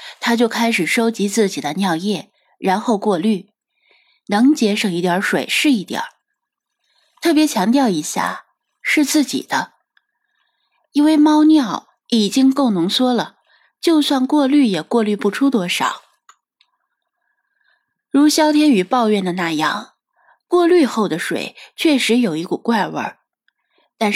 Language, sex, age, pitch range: Chinese, female, 20-39, 190-265 Hz